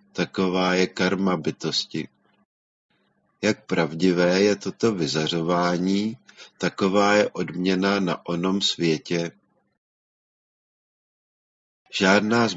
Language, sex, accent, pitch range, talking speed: Czech, male, native, 90-105 Hz, 80 wpm